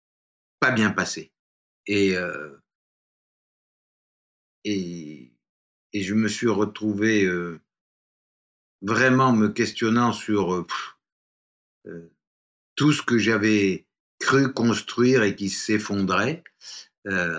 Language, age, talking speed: French, 50-69, 85 wpm